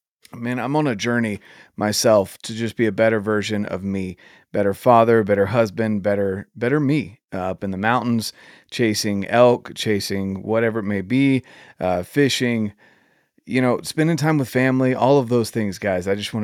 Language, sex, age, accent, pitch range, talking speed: English, male, 30-49, American, 100-125 Hz, 180 wpm